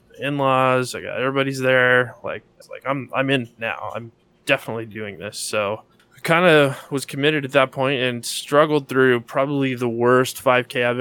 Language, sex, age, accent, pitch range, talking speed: English, male, 20-39, American, 110-125 Hz, 180 wpm